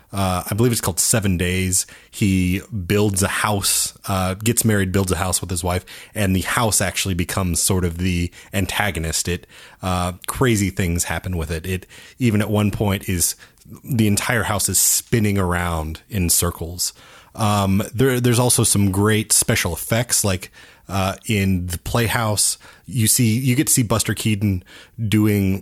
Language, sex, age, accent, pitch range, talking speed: English, male, 30-49, American, 90-110 Hz, 170 wpm